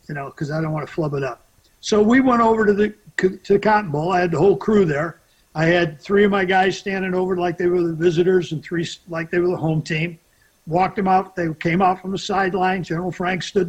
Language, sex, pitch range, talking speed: English, male, 155-200 Hz, 260 wpm